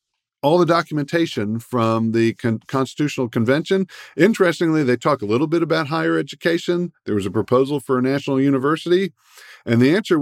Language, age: English, 50-69